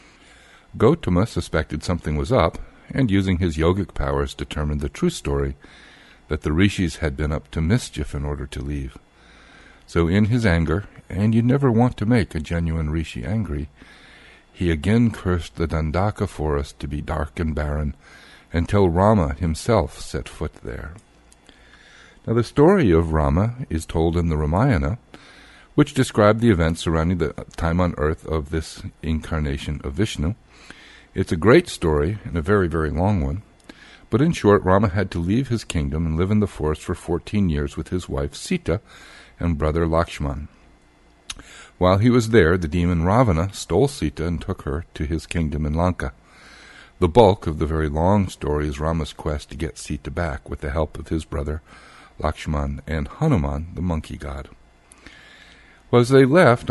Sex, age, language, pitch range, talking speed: male, 60-79, English, 75-100 Hz, 170 wpm